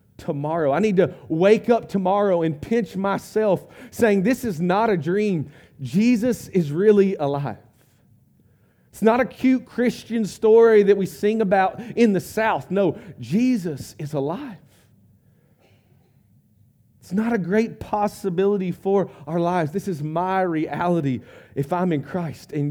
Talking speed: 145 wpm